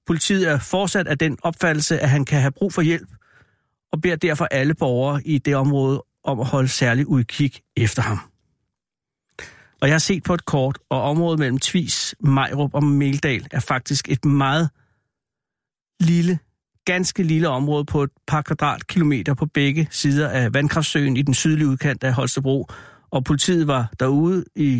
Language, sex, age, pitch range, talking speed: Danish, male, 60-79, 135-160 Hz, 170 wpm